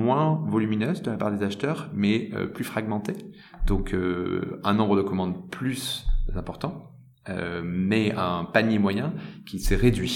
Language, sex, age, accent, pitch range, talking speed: French, male, 30-49, French, 95-120 Hz, 160 wpm